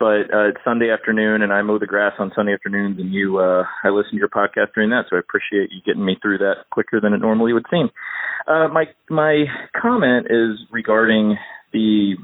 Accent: American